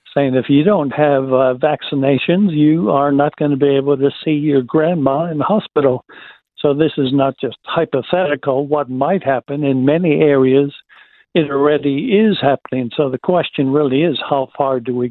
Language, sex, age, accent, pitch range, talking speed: English, male, 60-79, American, 135-155 Hz, 180 wpm